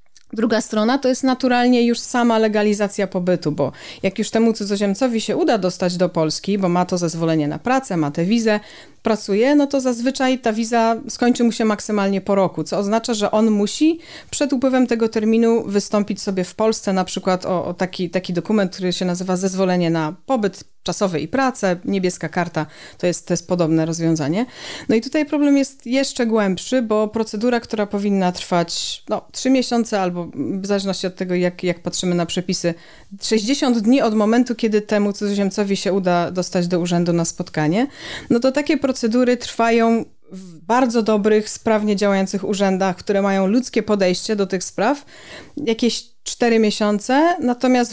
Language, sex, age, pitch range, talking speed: Polish, female, 40-59, 180-230 Hz, 175 wpm